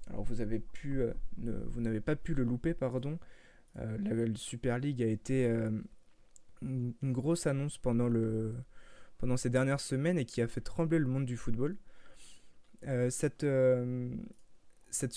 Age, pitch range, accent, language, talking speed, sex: 20-39, 120-150 Hz, French, French, 170 wpm, male